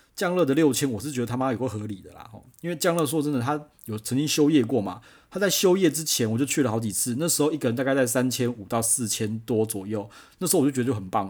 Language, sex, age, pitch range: Chinese, male, 30-49, 115-145 Hz